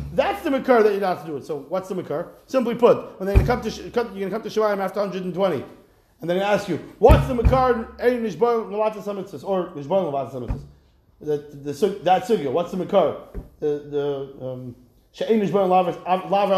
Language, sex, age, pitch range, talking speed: English, male, 30-49, 170-235 Hz, 190 wpm